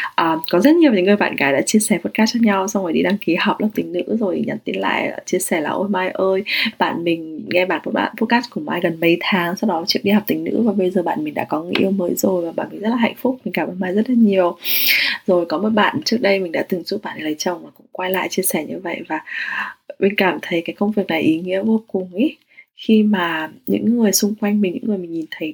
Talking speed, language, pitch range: 290 wpm, English, 175-230 Hz